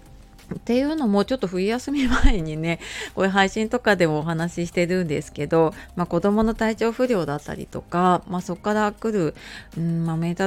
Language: Japanese